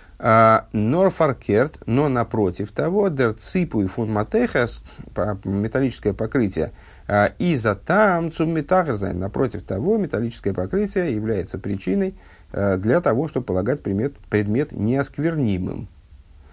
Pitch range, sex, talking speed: 95-135 Hz, male, 90 wpm